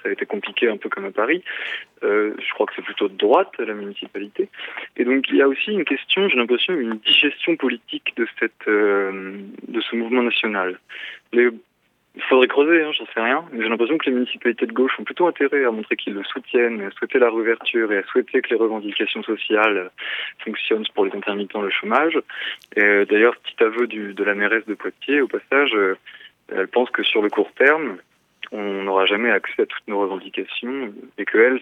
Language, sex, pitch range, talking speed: French, male, 105-150 Hz, 205 wpm